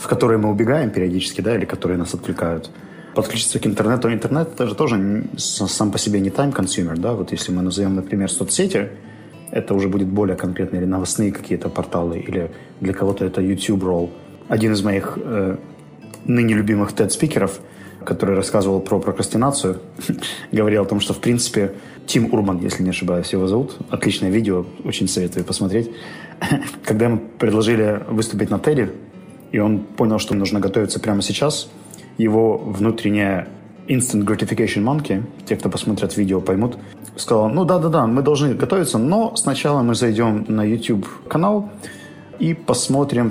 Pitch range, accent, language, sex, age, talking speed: 95-115 Hz, native, Russian, male, 20-39, 150 wpm